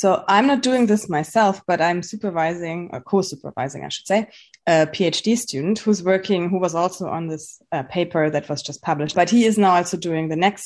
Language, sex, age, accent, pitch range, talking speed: English, female, 20-39, German, 160-195 Hz, 215 wpm